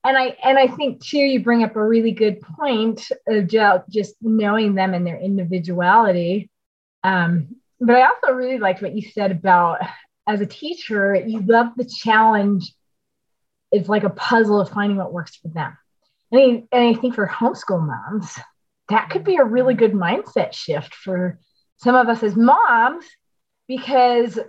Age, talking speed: 30-49, 170 wpm